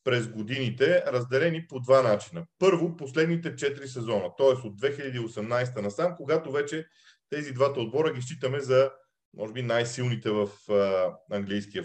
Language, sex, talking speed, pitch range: Bulgarian, male, 140 wpm, 120-145 Hz